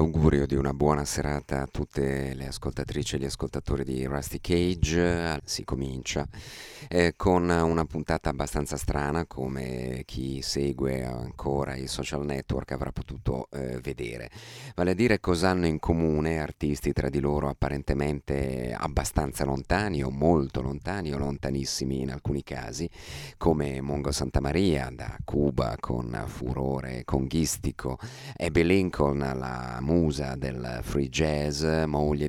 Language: Italian